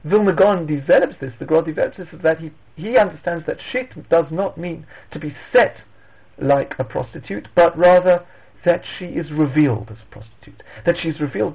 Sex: male